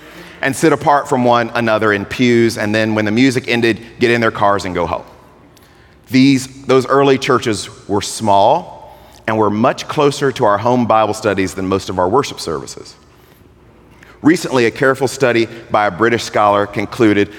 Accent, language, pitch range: American, English, 105-130 Hz